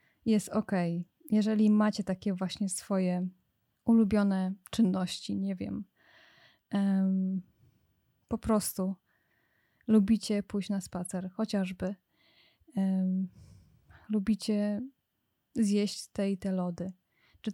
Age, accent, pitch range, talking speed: 20-39, native, 185-215 Hz, 85 wpm